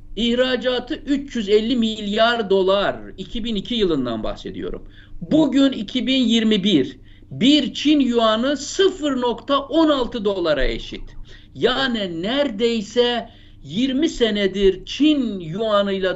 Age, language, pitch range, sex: 60-79, Turkish, 195-260 Hz, male